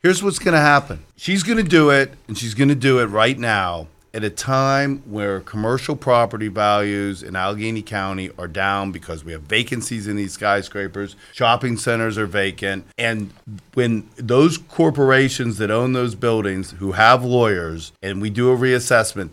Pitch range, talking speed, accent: 105-135 Hz, 175 wpm, American